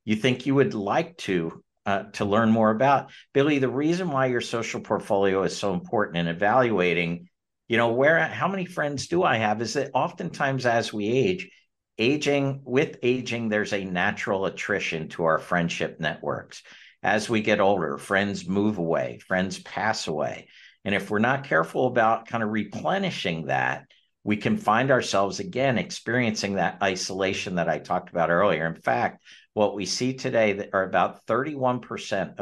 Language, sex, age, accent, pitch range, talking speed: English, male, 50-69, American, 90-125 Hz, 170 wpm